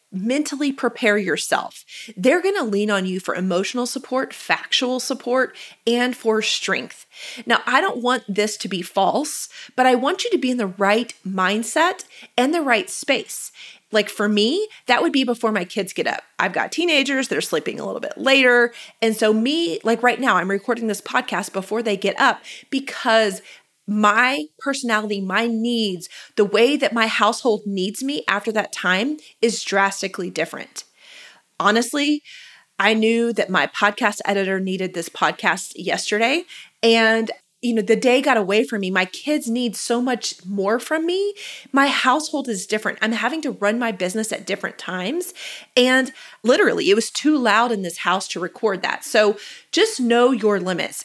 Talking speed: 175 wpm